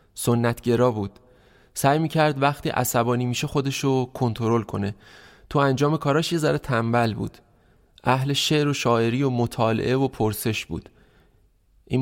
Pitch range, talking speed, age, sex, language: 115-145 Hz, 135 wpm, 20-39, male, Persian